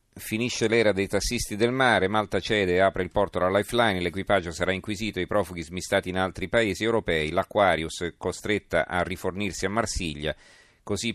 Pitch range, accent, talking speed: 90-105 Hz, native, 170 wpm